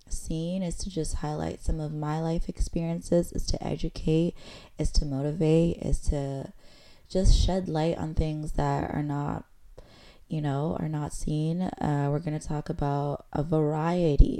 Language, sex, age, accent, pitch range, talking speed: English, female, 20-39, American, 150-175 Hz, 165 wpm